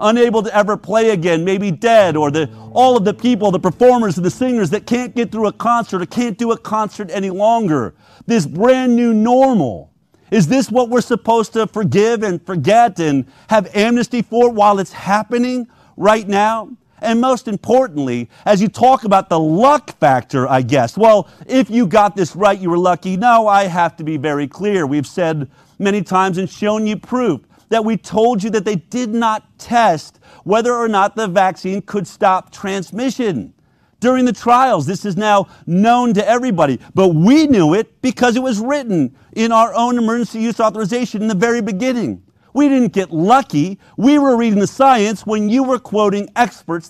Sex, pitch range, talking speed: male, 185-235 Hz, 185 wpm